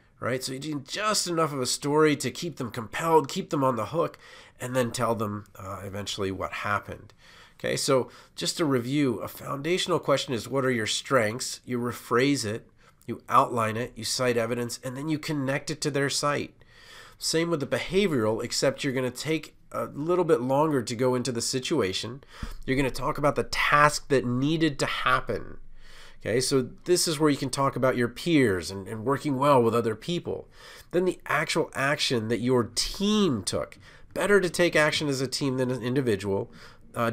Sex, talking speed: male, 195 wpm